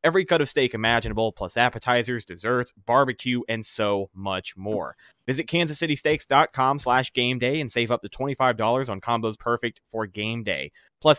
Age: 20-39